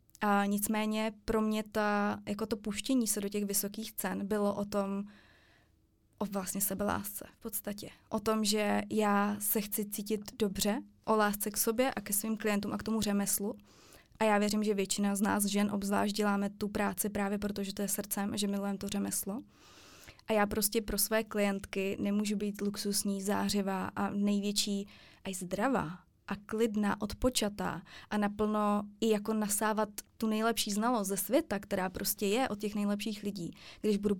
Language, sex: Czech, female